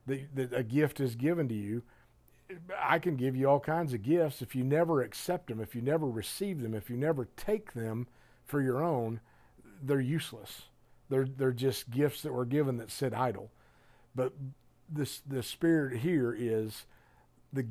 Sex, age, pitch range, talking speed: male, 50-69, 120-150 Hz, 175 wpm